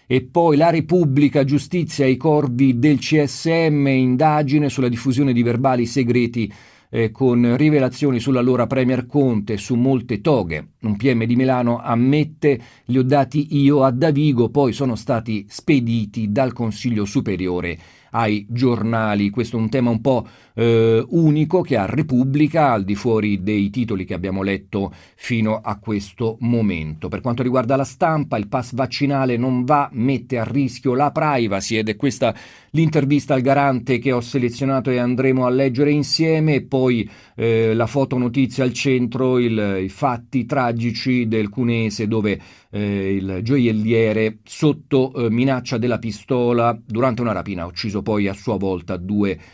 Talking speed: 155 wpm